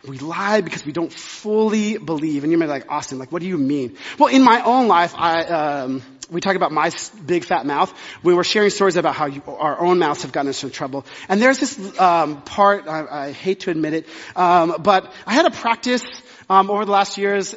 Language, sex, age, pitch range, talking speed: English, male, 30-49, 170-250 Hz, 235 wpm